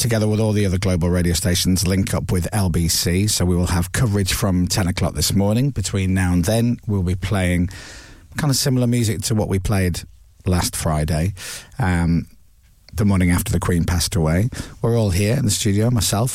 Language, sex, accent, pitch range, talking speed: English, male, British, 90-115 Hz, 200 wpm